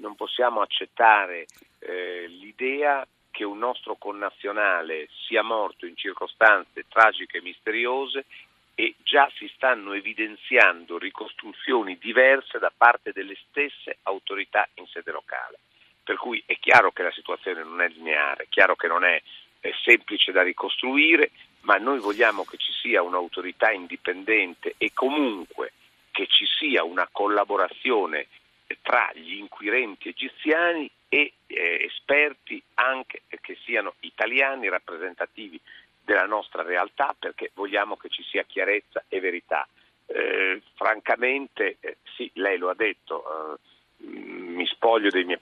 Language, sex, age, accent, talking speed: Italian, male, 50-69, native, 135 wpm